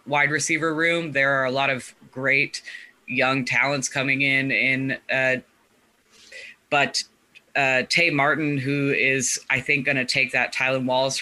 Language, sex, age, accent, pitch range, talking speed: English, female, 20-39, American, 130-145 Hz, 150 wpm